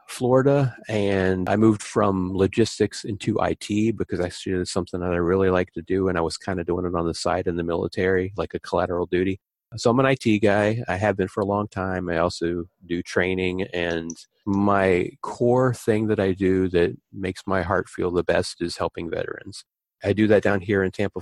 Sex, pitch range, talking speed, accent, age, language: male, 90-105 Hz, 220 wpm, American, 30-49, English